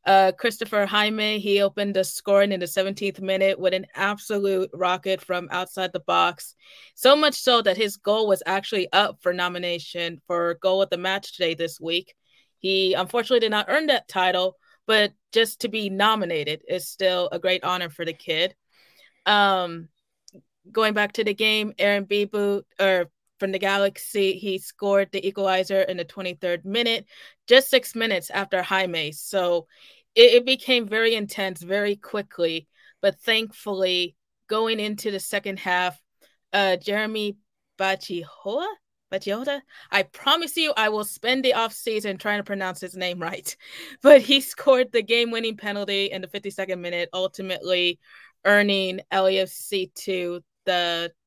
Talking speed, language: 150 wpm, English